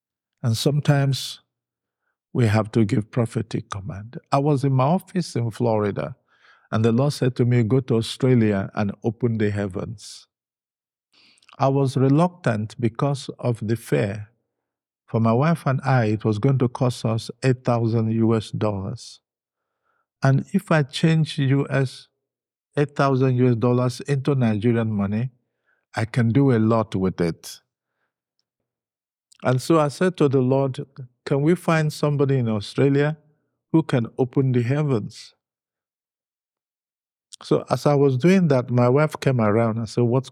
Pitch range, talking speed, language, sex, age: 115-150 Hz, 140 wpm, English, male, 50-69